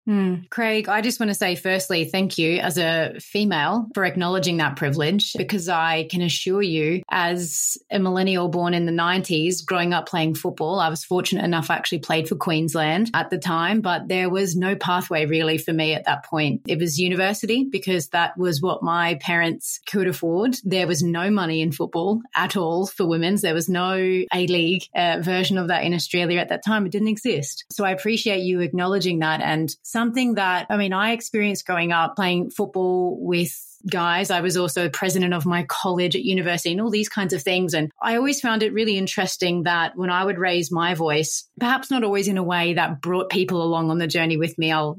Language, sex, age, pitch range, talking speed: English, female, 30-49, 170-200 Hz, 210 wpm